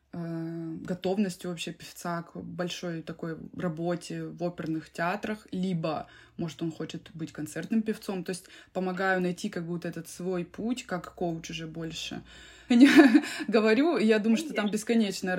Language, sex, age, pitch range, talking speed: Russian, female, 20-39, 175-215 Hz, 140 wpm